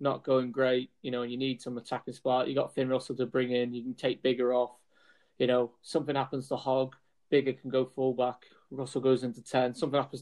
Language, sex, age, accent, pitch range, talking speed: English, male, 20-39, British, 125-135 Hz, 235 wpm